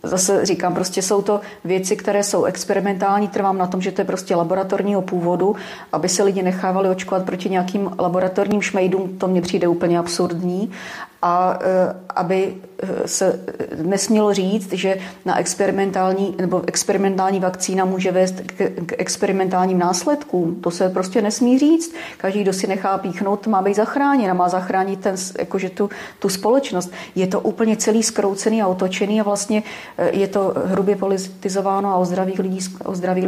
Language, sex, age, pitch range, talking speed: Slovak, female, 30-49, 180-205 Hz, 150 wpm